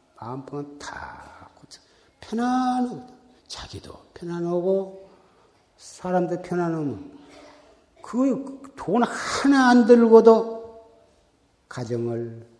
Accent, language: native, Korean